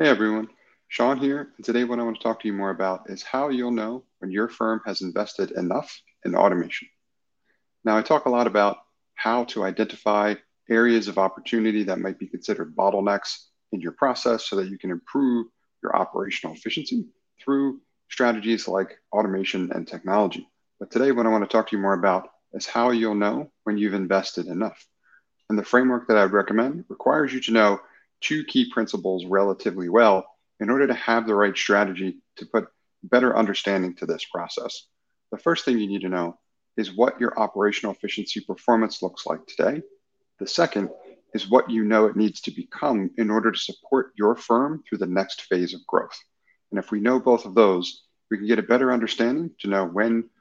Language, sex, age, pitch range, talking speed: English, male, 40-59, 100-120 Hz, 195 wpm